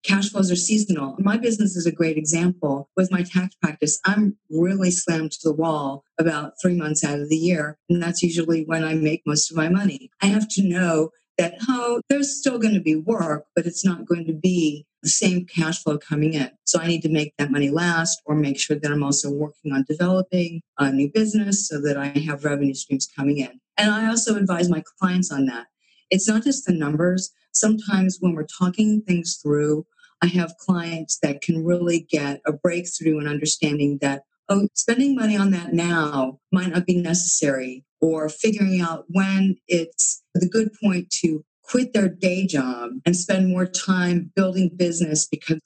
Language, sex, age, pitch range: English, female, 50-69, 155-190 Hz